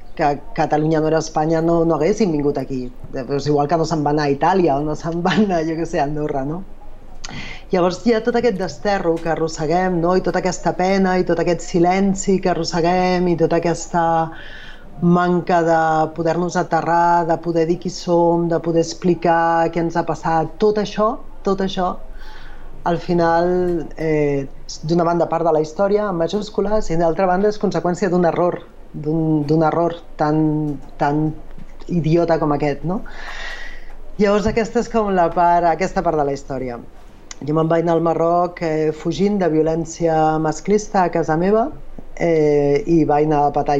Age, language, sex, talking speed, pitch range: 30-49, Spanish, female, 175 wpm, 155-180 Hz